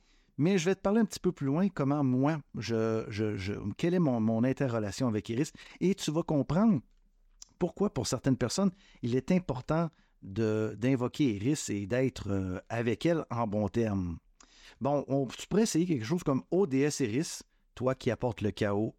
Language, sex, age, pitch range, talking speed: French, male, 50-69, 110-150 Hz, 170 wpm